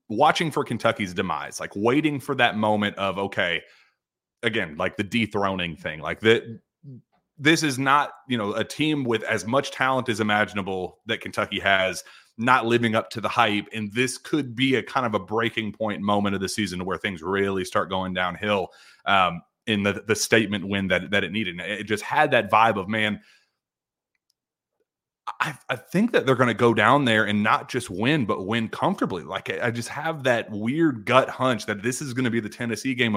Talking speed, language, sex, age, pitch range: 200 wpm, English, male, 30-49, 100-125 Hz